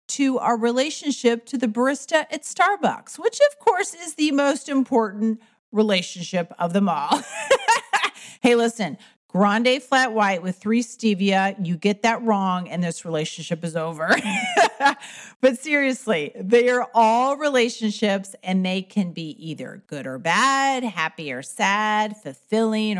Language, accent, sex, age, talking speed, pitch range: English, American, female, 40-59, 140 wpm, 190-255 Hz